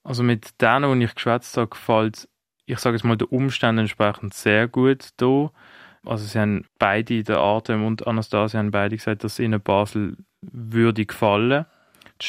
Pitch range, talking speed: 105-115 Hz, 165 wpm